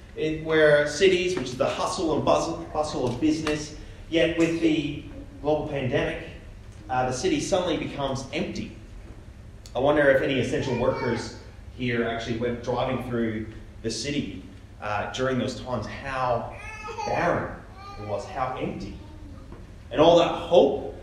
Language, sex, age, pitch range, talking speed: English, male, 30-49, 100-150 Hz, 135 wpm